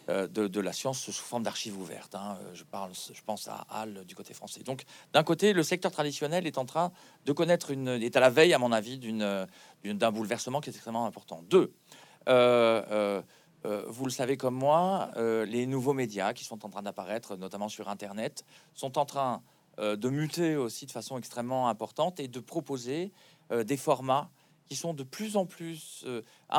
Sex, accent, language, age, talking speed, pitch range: male, French, French, 40-59, 200 wpm, 110-160 Hz